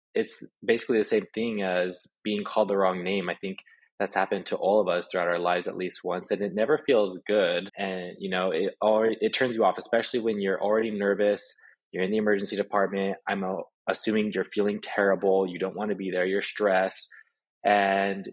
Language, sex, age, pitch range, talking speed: English, male, 20-39, 95-105 Hz, 205 wpm